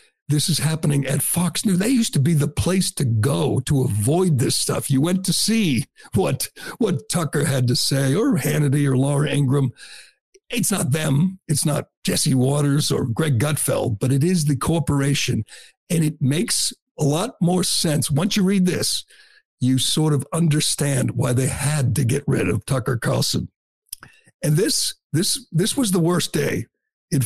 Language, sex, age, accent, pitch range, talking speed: English, male, 60-79, American, 135-165 Hz, 180 wpm